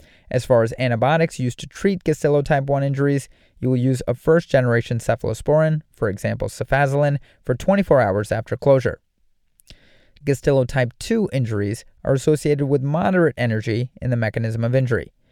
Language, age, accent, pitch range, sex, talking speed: English, 30-49, American, 115-150 Hz, male, 145 wpm